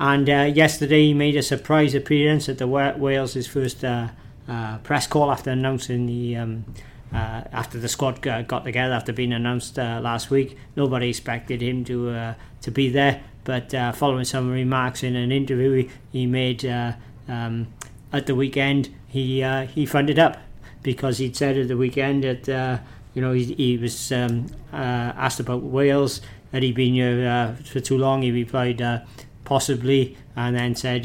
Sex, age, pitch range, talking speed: male, 40-59, 120-135 Hz, 185 wpm